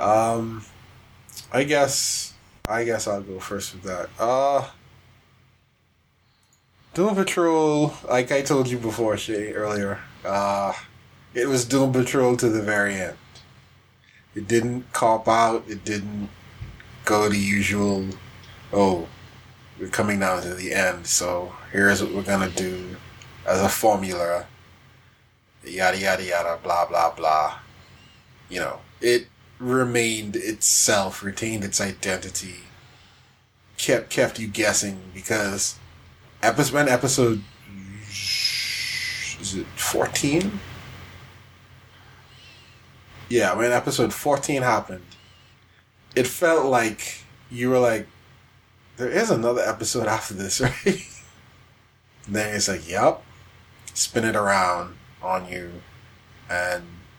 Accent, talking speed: American, 110 wpm